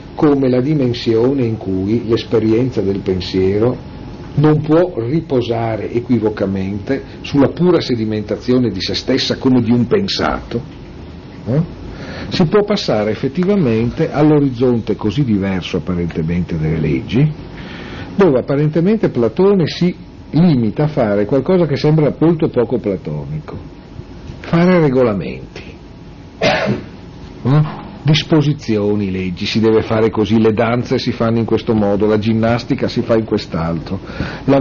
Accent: native